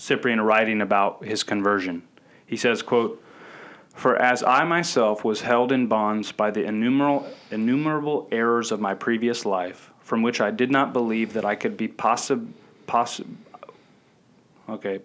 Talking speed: 150 wpm